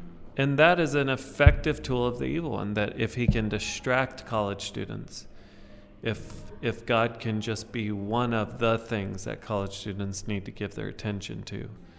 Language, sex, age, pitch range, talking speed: English, male, 40-59, 100-115 Hz, 180 wpm